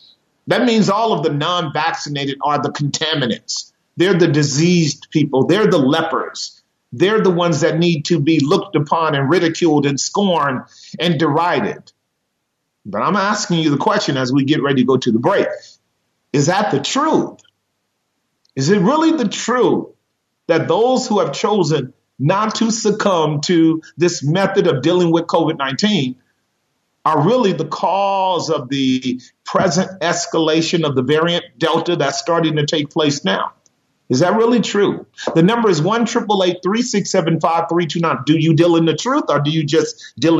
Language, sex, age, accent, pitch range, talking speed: English, male, 40-59, American, 150-195 Hz, 170 wpm